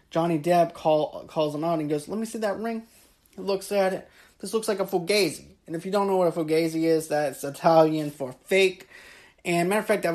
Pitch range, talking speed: 155-195 Hz, 240 wpm